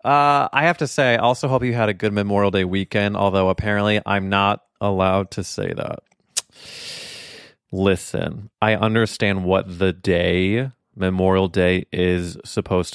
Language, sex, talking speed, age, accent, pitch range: English, male, 155 wpm, 20-39, American, 95-120 Hz